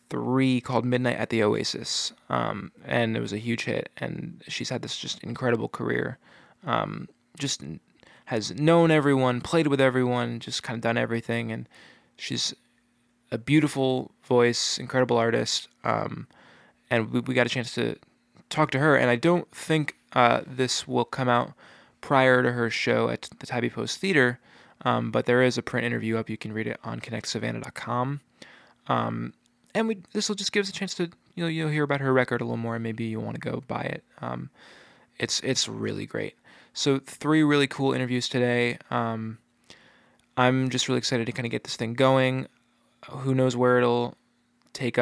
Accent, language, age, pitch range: American, English, 20-39, 115-135 Hz